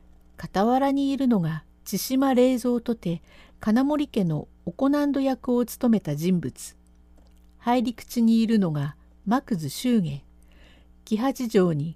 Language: Japanese